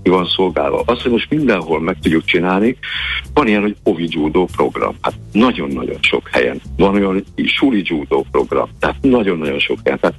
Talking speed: 170 wpm